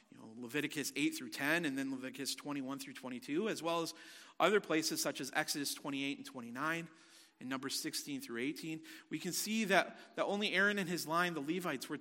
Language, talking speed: English, 205 wpm